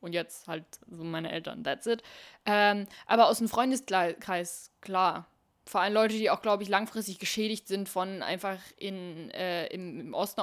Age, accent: 10-29, German